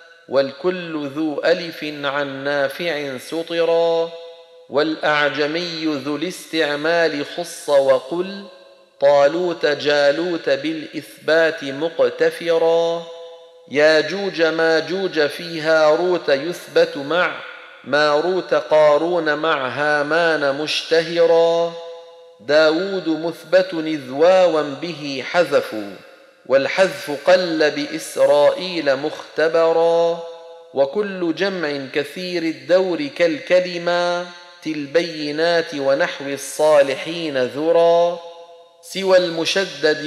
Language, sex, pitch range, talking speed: Arabic, male, 150-175 Hz, 70 wpm